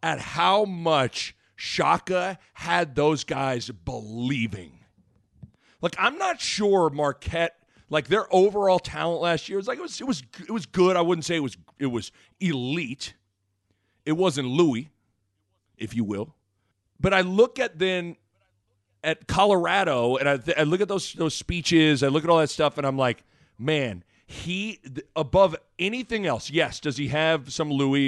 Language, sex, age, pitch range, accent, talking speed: English, male, 40-59, 115-170 Hz, American, 170 wpm